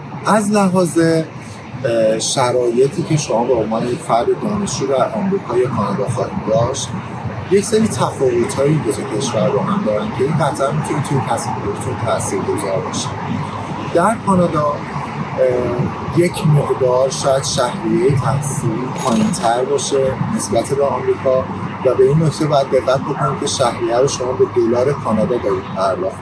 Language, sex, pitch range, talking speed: Persian, male, 125-165 Hz, 140 wpm